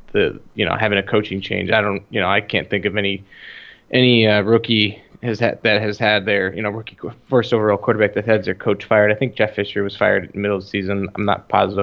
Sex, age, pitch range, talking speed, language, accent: male, 20-39, 105-115 Hz, 260 wpm, English, American